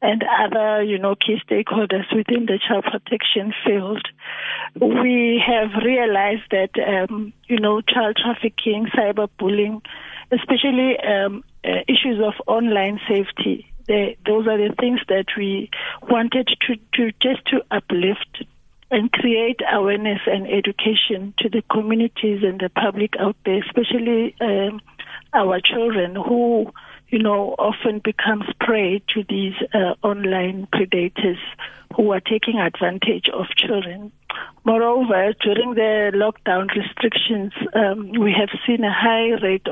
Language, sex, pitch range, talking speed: English, female, 200-230 Hz, 130 wpm